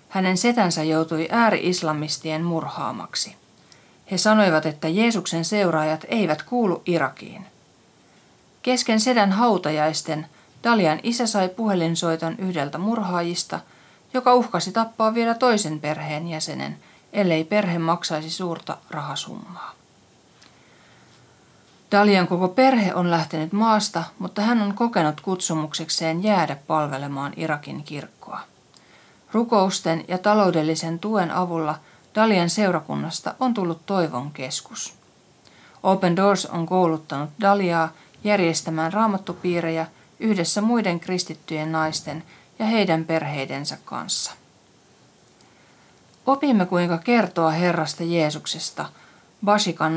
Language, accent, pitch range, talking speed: Finnish, native, 160-210 Hz, 95 wpm